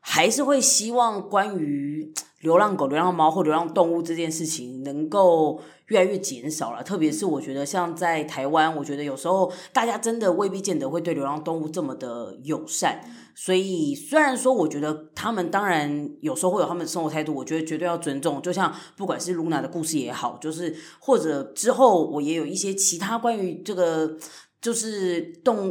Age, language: 20-39, Chinese